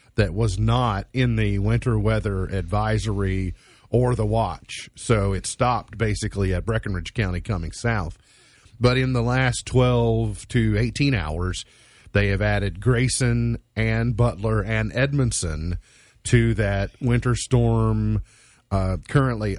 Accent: American